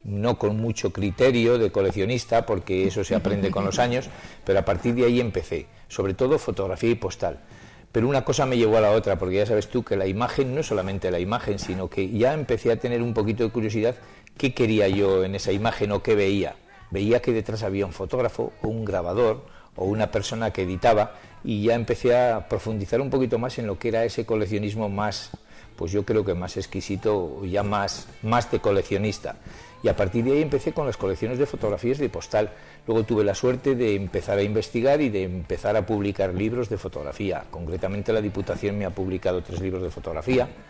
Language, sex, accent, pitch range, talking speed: Spanish, male, Spanish, 95-120 Hz, 210 wpm